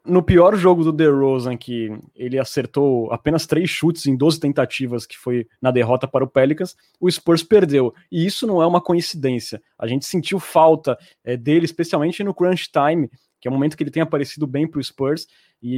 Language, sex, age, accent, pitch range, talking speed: Portuguese, male, 20-39, Brazilian, 130-160 Hz, 200 wpm